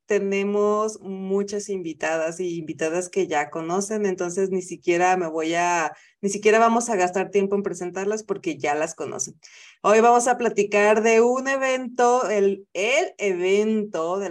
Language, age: Spanish, 30-49